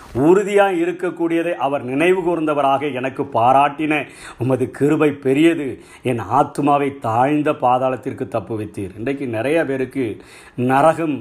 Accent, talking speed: native, 105 wpm